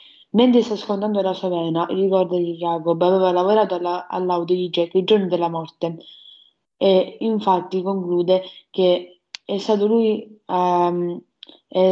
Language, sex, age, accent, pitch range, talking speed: Italian, female, 20-39, native, 175-200 Hz, 130 wpm